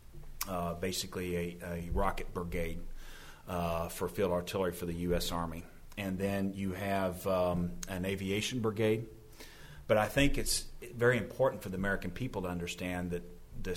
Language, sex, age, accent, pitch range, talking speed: English, male, 40-59, American, 85-100 Hz, 155 wpm